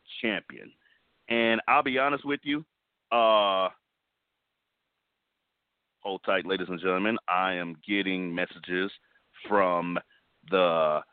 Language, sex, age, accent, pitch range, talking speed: English, male, 40-59, American, 90-110 Hz, 100 wpm